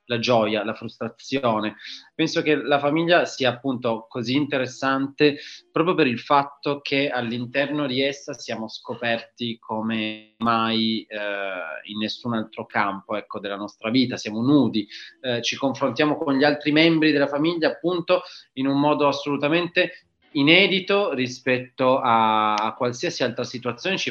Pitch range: 115-140 Hz